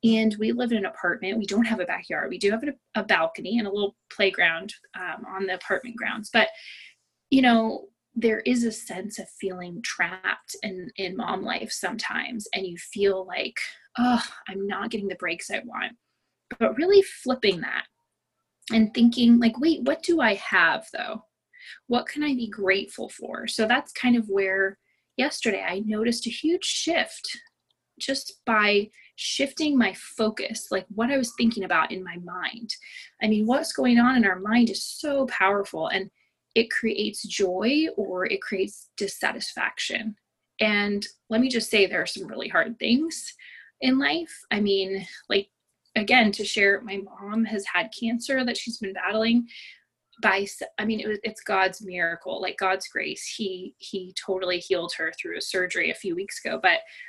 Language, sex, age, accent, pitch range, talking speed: English, female, 20-39, American, 195-245 Hz, 175 wpm